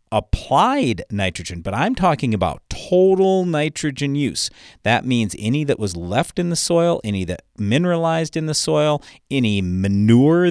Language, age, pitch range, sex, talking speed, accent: English, 40-59, 105-140 Hz, male, 150 wpm, American